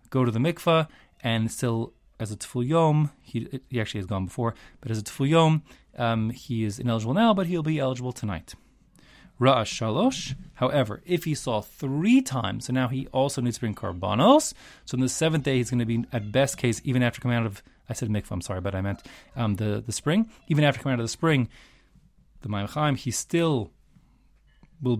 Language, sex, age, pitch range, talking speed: English, male, 20-39, 115-150 Hz, 205 wpm